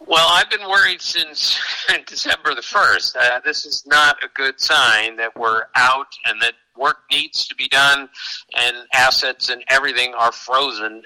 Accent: American